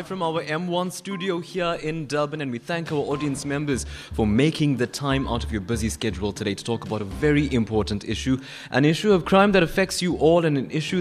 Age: 20-39